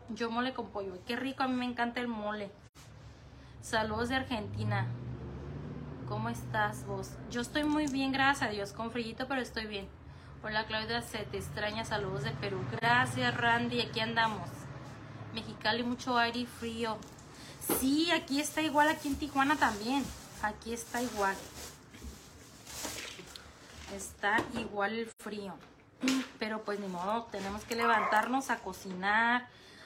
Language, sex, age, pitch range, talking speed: Spanish, female, 20-39, 200-245 Hz, 145 wpm